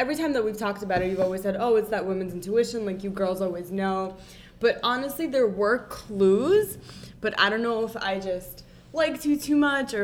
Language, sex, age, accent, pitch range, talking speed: English, female, 10-29, American, 185-230 Hz, 220 wpm